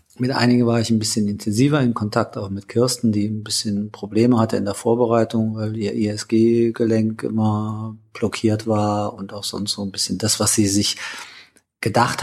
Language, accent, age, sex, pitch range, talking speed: German, German, 40-59, male, 105-120 Hz, 180 wpm